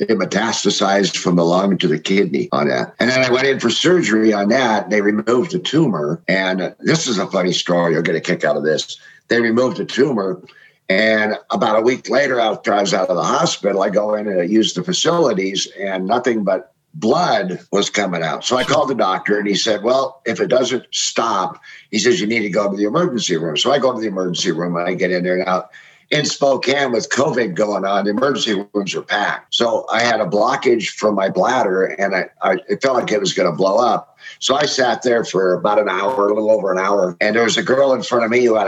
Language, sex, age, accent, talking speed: English, male, 60-79, American, 245 wpm